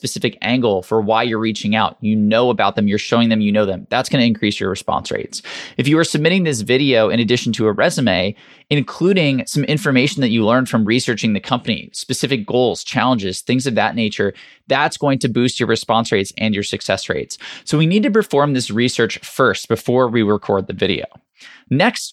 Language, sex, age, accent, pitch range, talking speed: English, male, 20-39, American, 110-140 Hz, 210 wpm